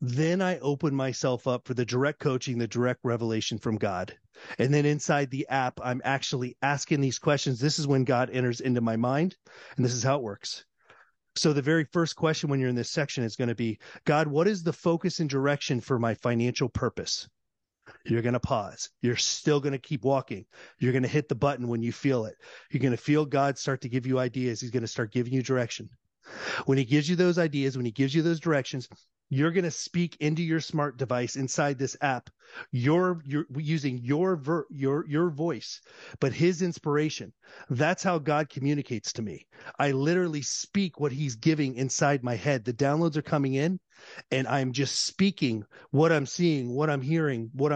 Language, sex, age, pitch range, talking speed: English, male, 30-49, 125-160 Hz, 205 wpm